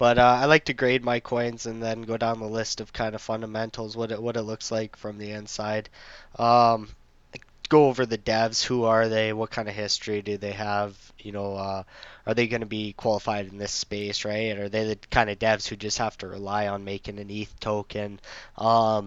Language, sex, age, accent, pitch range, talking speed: English, male, 20-39, American, 100-115 Hz, 225 wpm